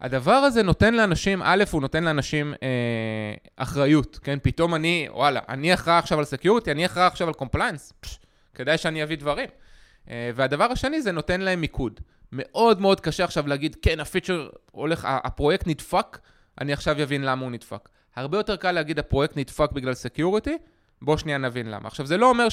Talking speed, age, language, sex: 185 wpm, 20-39, Hebrew, male